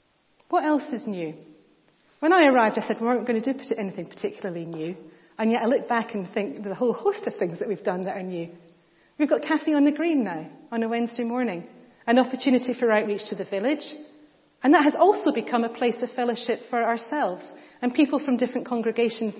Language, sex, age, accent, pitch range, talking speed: English, female, 40-59, British, 205-265 Hz, 215 wpm